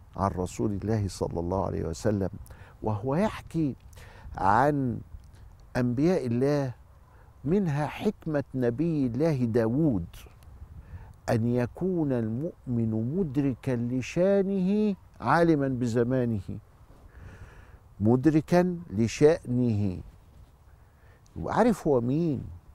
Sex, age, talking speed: male, 50-69, 75 wpm